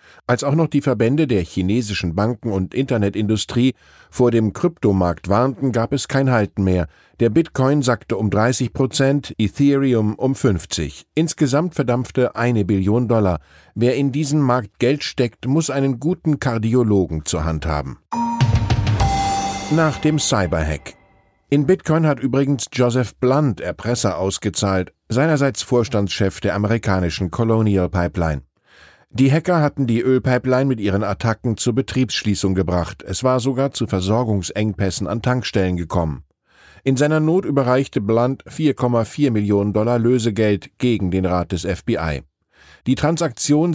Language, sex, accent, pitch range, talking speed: German, male, German, 100-135 Hz, 135 wpm